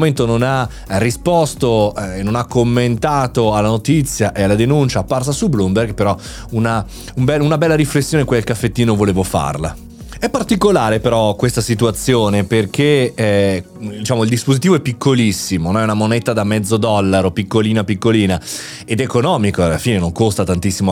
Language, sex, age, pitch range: Italian, male, 30-49, 105-150 Hz